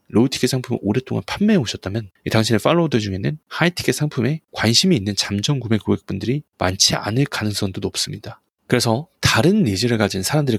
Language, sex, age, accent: Korean, male, 20-39, native